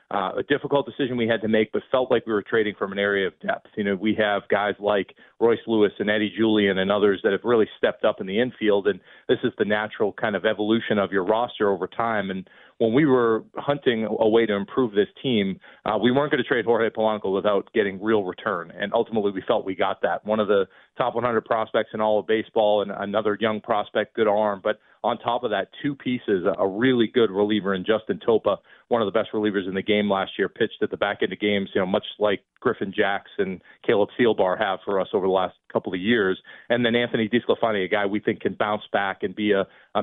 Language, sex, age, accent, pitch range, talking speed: English, male, 40-59, American, 100-115 Hz, 245 wpm